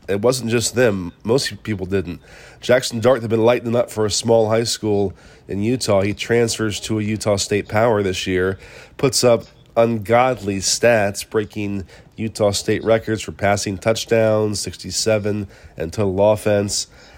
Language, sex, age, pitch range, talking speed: English, male, 30-49, 100-115 Hz, 155 wpm